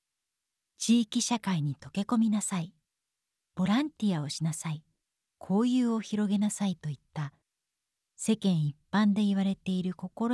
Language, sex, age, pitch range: Japanese, female, 40-59, 160-225 Hz